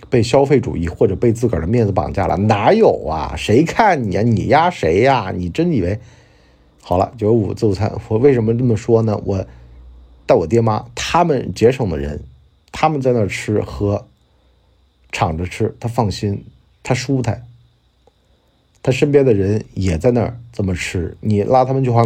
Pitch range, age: 90-115 Hz, 50-69